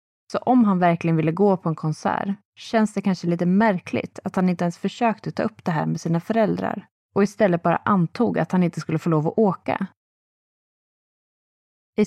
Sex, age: female, 30-49